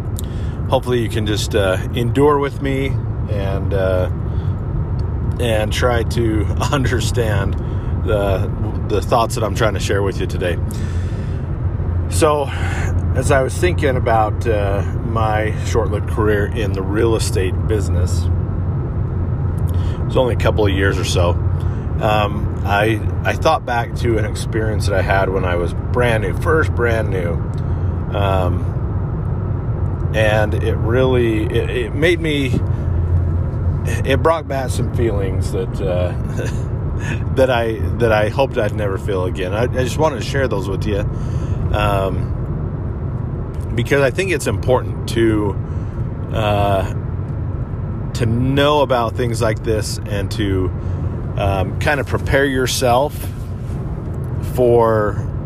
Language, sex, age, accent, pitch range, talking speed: English, male, 40-59, American, 95-120 Hz, 135 wpm